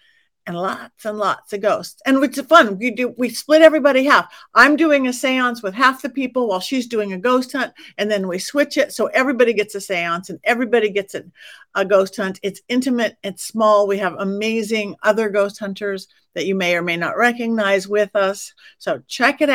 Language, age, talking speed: English, 50-69, 210 wpm